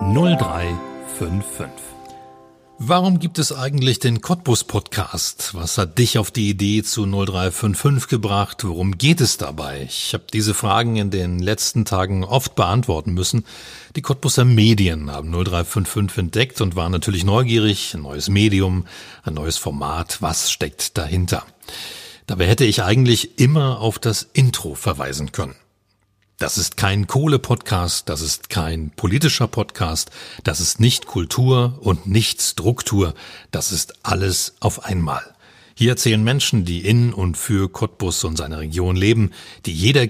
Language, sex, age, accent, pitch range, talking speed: German, male, 40-59, German, 90-120 Hz, 140 wpm